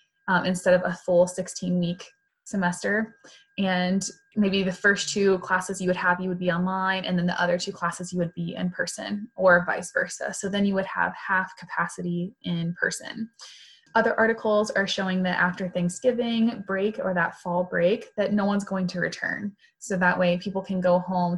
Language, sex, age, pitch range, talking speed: English, female, 20-39, 180-220 Hz, 190 wpm